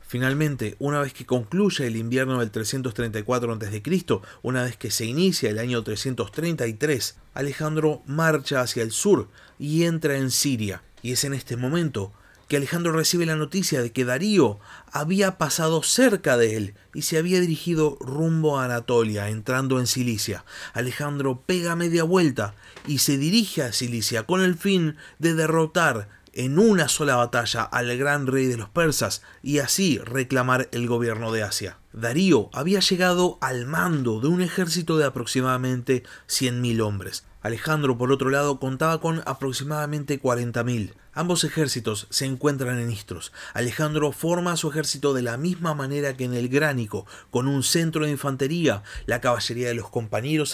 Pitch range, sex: 120-155 Hz, male